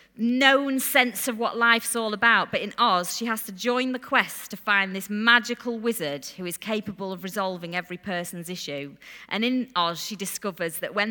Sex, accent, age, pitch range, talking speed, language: female, British, 30-49, 170-235 Hz, 195 wpm, English